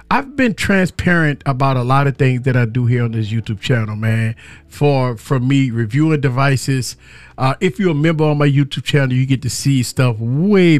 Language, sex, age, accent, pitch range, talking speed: English, male, 40-59, American, 130-170 Hz, 205 wpm